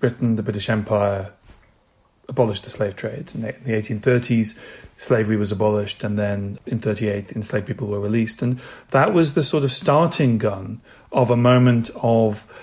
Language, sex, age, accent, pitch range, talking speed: English, male, 40-59, British, 110-130 Hz, 165 wpm